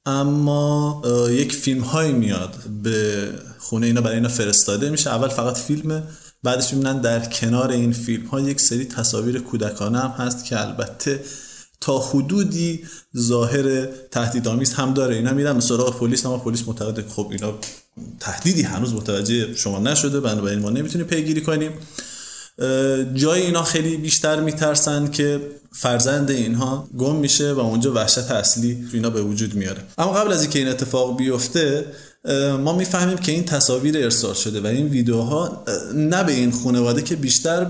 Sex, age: male, 30-49